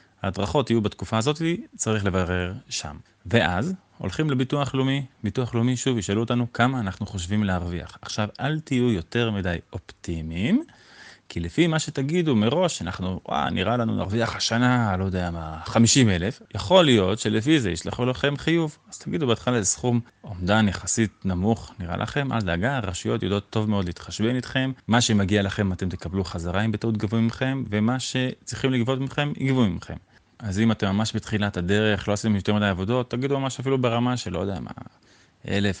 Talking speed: 170 wpm